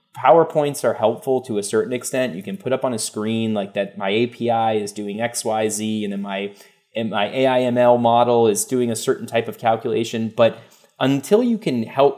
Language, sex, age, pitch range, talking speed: English, male, 20-39, 110-135 Hz, 205 wpm